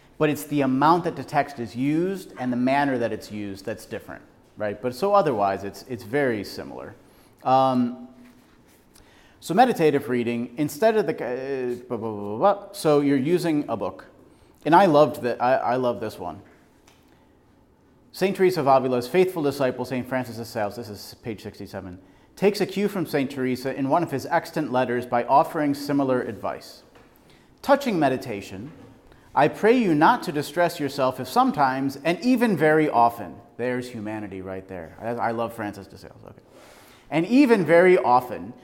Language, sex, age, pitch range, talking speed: English, male, 30-49, 115-155 Hz, 170 wpm